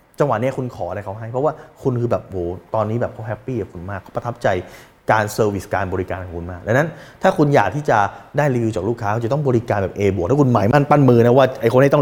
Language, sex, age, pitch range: Thai, male, 20-39, 105-135 Hz